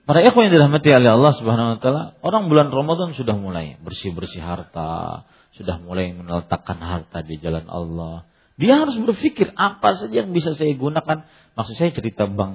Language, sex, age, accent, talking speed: English, male, 40-59, Indonesian, 160 wpm